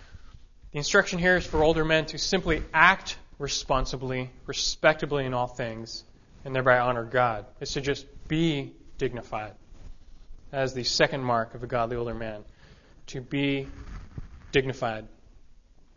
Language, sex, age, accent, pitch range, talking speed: English, male, 20-39, American, 125-175 Hz, 140 wpm